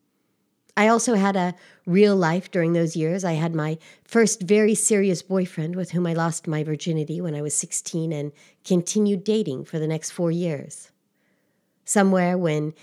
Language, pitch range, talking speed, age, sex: English, 155-195 Hz, 170 wpm, 50-69, female